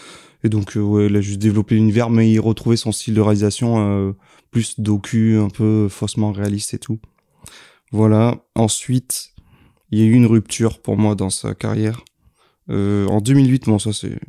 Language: French